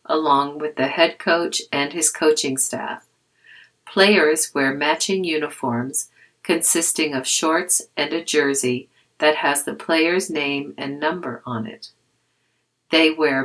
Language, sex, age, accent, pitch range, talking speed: English, female, 50-69, American, 135-170 Hz, 135 wpm